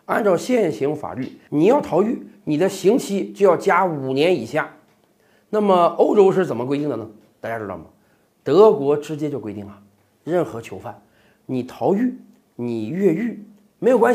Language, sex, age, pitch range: Chinese, male, 40-59, 150-240 Hz